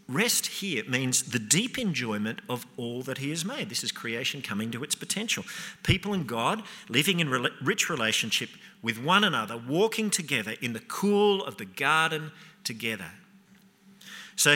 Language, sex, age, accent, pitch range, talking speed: English, male, 50-69, Australian, 135-200 Hz, 160 wpm